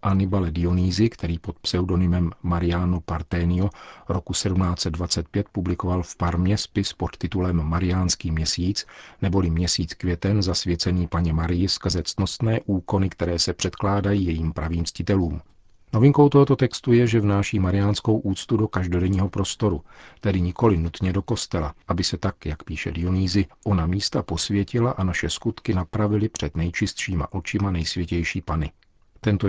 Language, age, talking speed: Czech, 40-59, 135 wpm